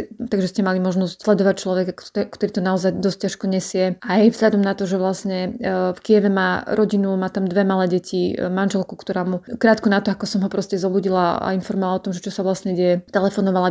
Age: 20-39